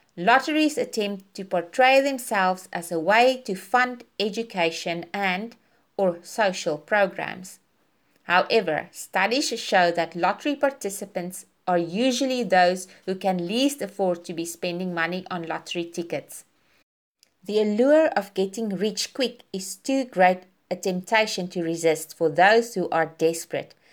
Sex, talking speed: female, 135 wpm